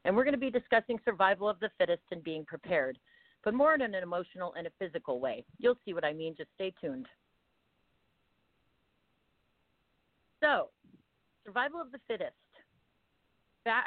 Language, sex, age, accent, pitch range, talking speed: English, female, 40-59, American, 155-195 Hz, 150 wpm